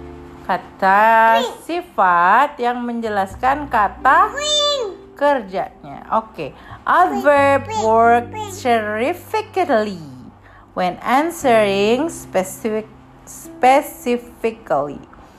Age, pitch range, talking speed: 40-59, 200-320 Hz, 60 wpm